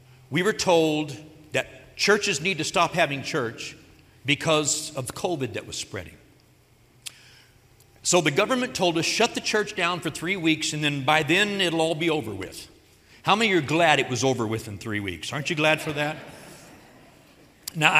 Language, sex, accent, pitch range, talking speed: English, male, American, 135-190 Hz, 185 wpm